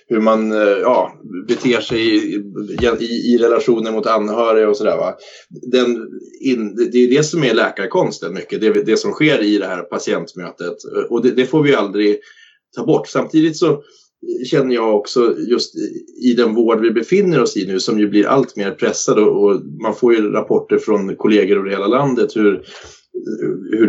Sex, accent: male, native